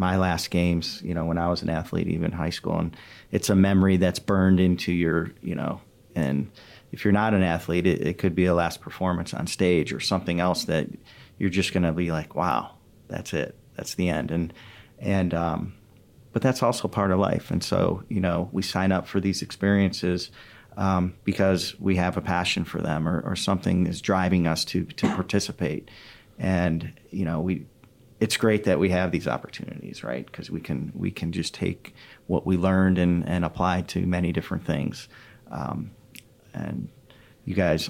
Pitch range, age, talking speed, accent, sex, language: 90-100 Hz, 40-59, 195 wpm, American, male, English